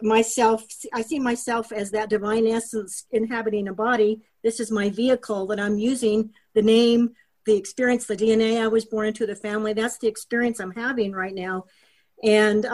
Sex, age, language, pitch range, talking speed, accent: female, 50-69, English, 210-250 Hz, 180 wpm, American